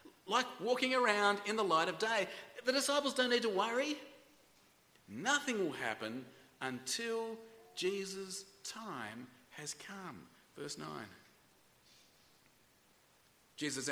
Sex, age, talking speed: male, 40-59, 110 wpm